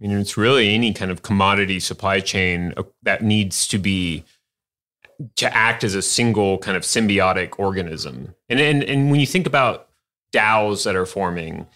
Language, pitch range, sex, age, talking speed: English, 95-120 Hz, male, 30-49, 175 wpm